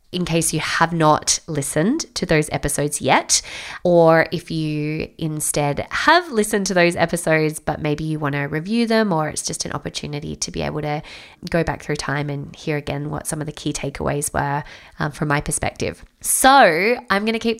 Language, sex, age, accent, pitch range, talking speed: English, female, 20-39, Australian, 155-210 Hz, 200 wpm